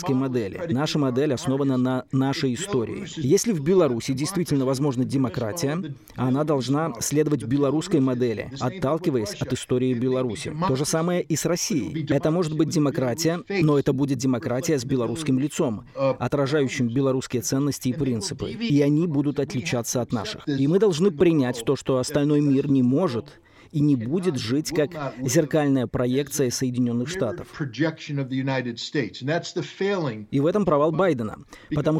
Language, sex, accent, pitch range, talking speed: Russian, male, native, 130-160 Hz, 140 wpm